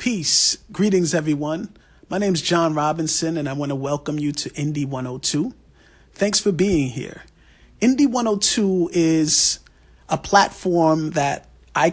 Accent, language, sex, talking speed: American, English, male, 140 wpm